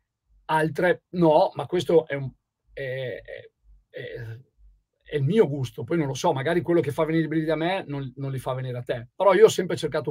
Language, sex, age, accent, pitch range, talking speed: Italian, male, 50-69, native, 145-185 Hz, 225 wpm